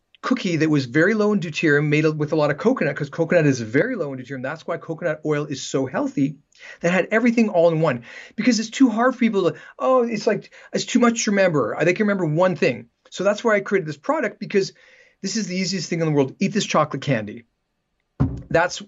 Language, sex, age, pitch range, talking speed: English, male, 40-59, 150-205 Hz, 235 wpm